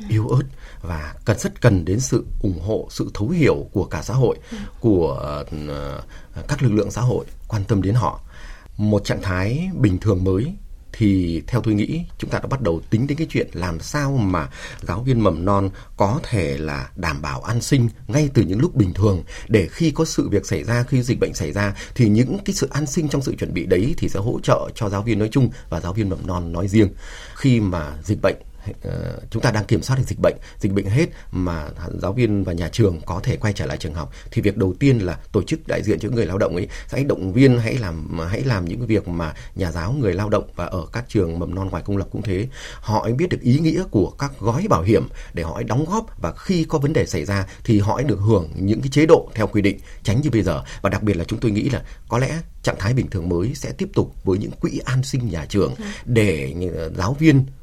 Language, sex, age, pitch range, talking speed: Vietnamese, male, 30-49, 95-125 Hz, 250 wpm